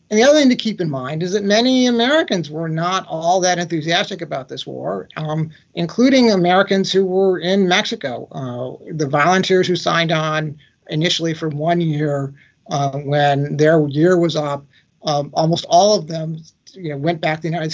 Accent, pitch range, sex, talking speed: American, 150-185 Hz, male, 180 wpm